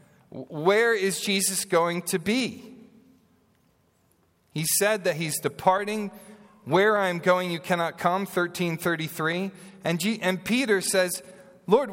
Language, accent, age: English, American, 40-59